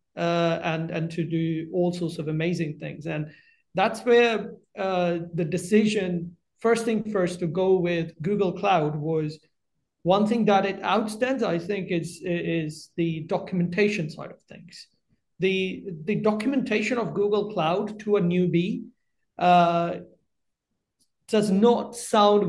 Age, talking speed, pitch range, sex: 30-49, 140 wpm, 165-205 Hz, male